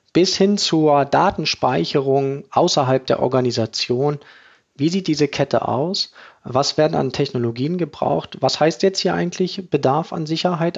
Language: German